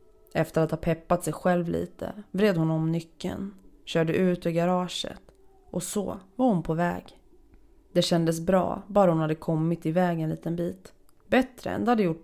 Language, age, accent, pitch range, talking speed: Swedish, 20-39, native, 170-200 Hz, 185 wpm